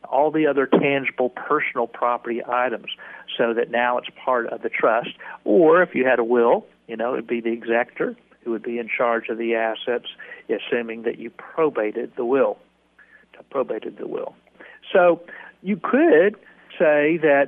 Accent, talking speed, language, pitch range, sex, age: American, 170 wpm, English, 120-150 Hz, male, 60-79